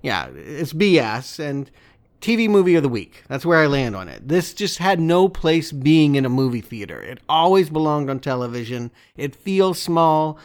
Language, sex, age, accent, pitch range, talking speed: English, male, 40-59, American, 130-170 Hz, 190 wpm